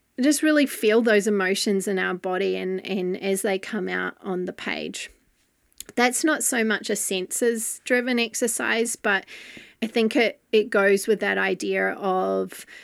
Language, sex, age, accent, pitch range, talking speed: English, female, 30-49, Australian, 190-235 Hz, 165 wpm